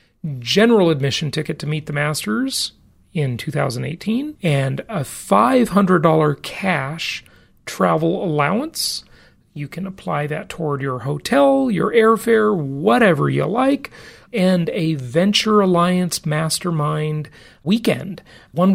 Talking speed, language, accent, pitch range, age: 110 wpm, English, American, 145-200 Hz, 40-59